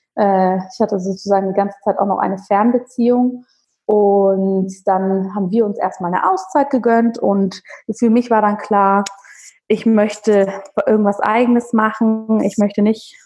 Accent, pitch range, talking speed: German, 200-240 Hz, 150 wpm